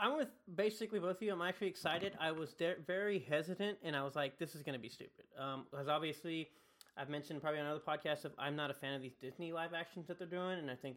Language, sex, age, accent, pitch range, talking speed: English, male, 30-49, American, 140-190 Hz, 270 wpm